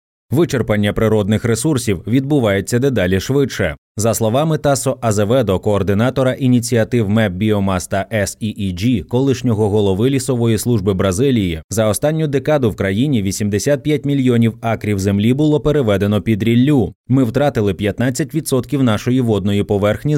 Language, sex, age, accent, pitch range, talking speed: Ukrainian, male, 20-39, native, 105-135 Hz, 115 wpm